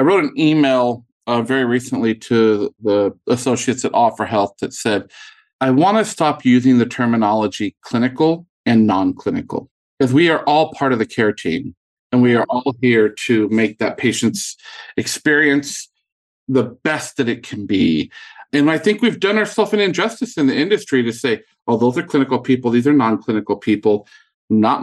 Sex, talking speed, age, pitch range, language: male, 180 wpm, 50-69, 115-155 Hz, English